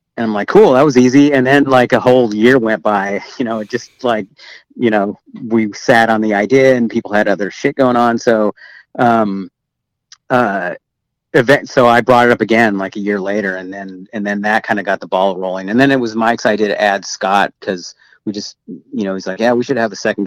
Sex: male